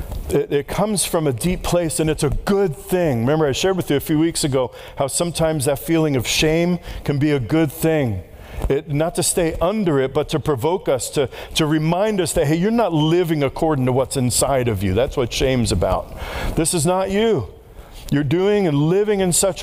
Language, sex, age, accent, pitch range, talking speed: English, male, 50-69, American, 120-180 Hz, 215 wpm